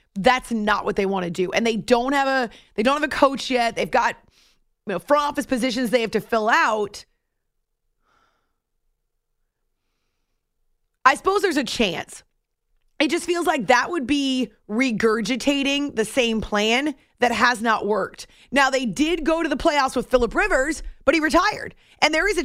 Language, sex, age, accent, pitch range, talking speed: English, female, 30-49, American, 225-305 Hz, 180 wpm